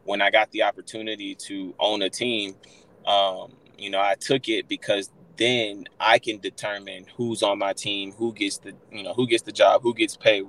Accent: American